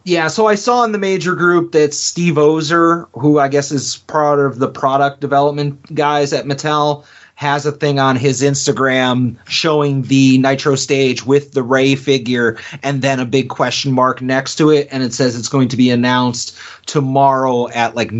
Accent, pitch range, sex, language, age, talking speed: American, 130-155 Hz, male, English, 30-49, 190 wpm